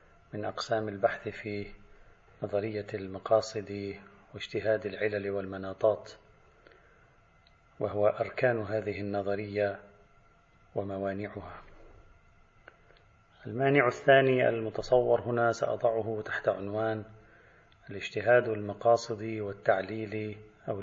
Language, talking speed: Arabic, 70 wpm